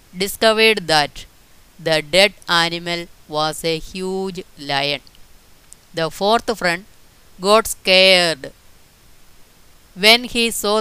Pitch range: 155-190 Hz